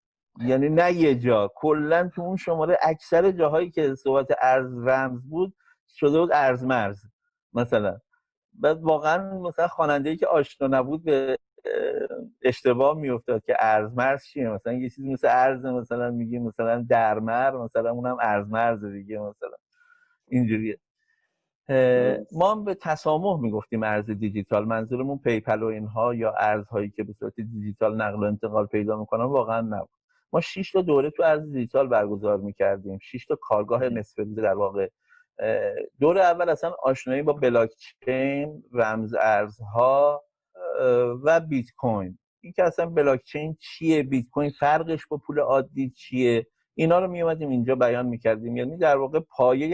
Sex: male